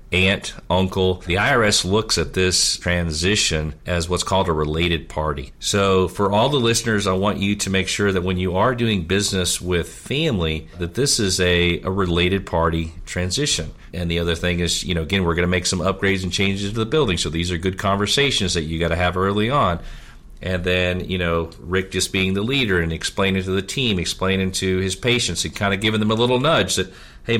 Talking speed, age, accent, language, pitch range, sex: 220 wpm, 40-59, American, English, 85-105 Hz, male